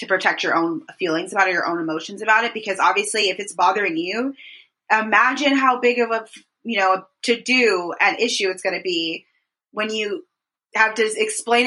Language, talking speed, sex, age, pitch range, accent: English, 200 wpm, female, 20-39, 180-235 Hz, American